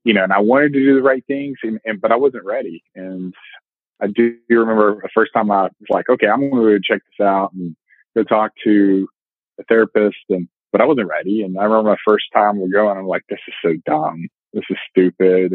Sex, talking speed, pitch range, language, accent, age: male, 235 wpm, 95-110 Hz, English, American, 30-49